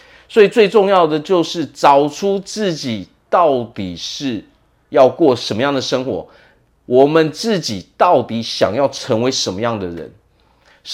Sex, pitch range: male, 110-165 Hz